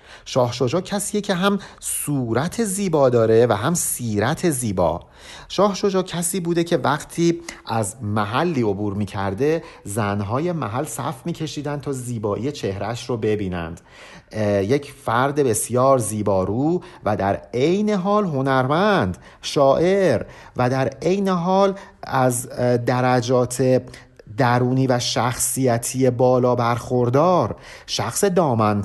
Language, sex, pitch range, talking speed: Persian, male, 110-170 Hz, 110 wpm